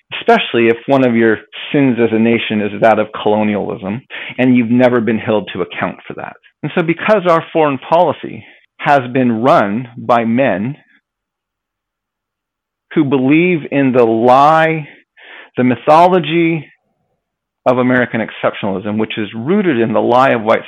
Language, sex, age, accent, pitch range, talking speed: English, male, 40-59, American, 115-150 Hz, 150 wpm